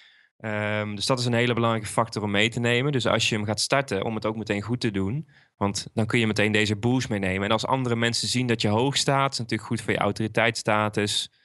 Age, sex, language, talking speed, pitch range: 20-39, male, Dutch, 250 wpm, 105-120 Hz